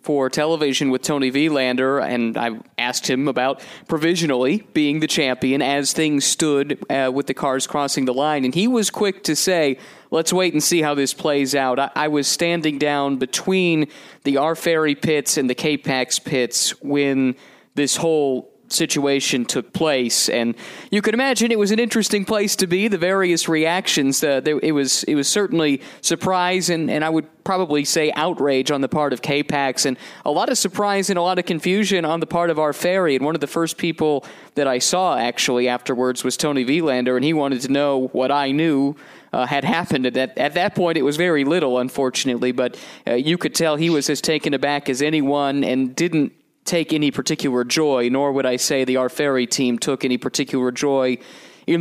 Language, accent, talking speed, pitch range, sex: English, American, 200 wpm, 135-165 Hz, male